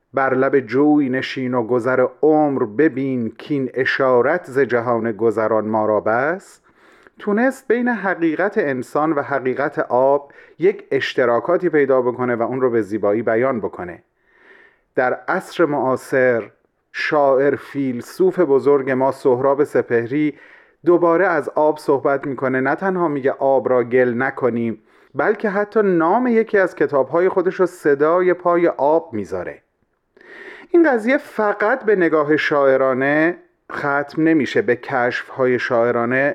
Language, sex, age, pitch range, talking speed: Persian, male, 30-49, 130-190 Hz, 130 wpm